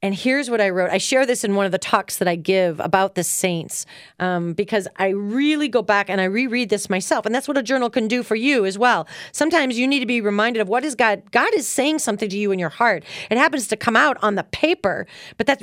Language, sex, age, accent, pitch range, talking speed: English, female, 40-59, American, 180-245 Hz, 270 wpm